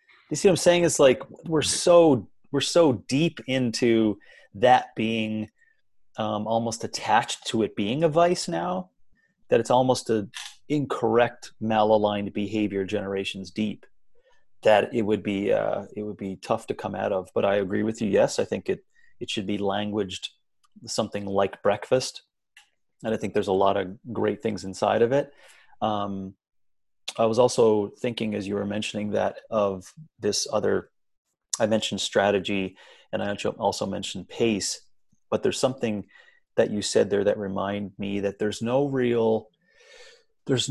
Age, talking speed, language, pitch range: 30-49, 160 wpm, English, 105-130 Hz